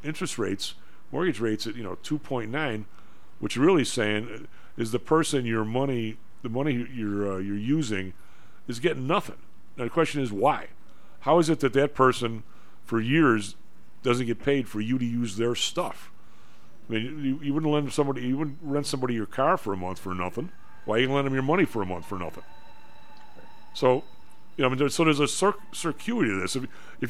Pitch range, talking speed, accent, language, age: 110-145 Hz, 205 wpm, American, English, 50-69